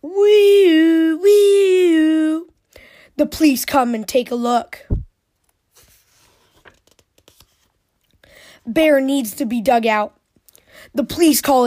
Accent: American